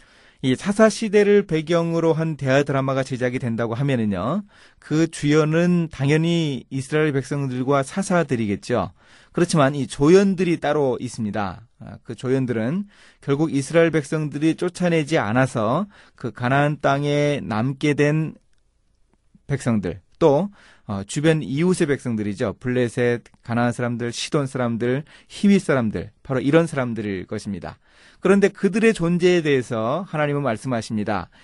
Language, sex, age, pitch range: Korean, male, 30-49, 120-170 Hz